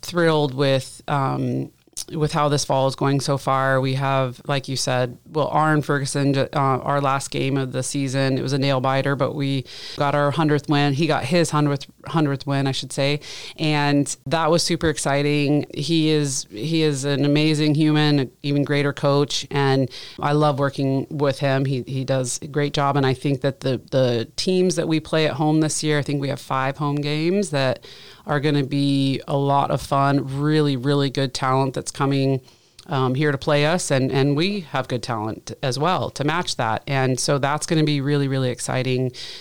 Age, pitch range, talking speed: 30-49, 135-155 Hz, 205 wpm